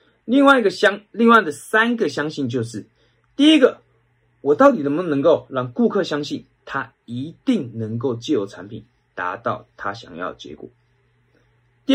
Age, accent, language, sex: 20-39, native, Chinese, male